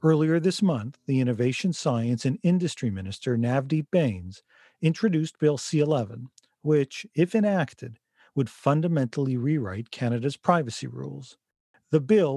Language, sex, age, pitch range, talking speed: English, male, 40-59, 120-165 Hz, 125 wpm